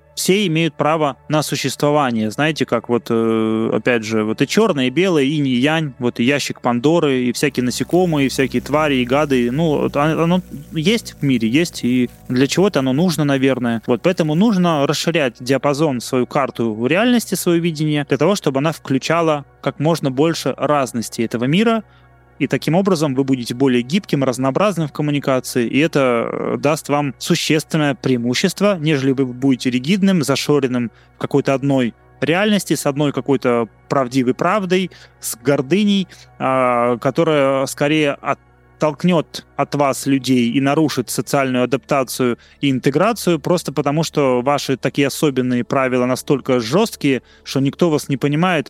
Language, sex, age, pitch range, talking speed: English, male, 20-39, 130-160 Hz, 150 wpm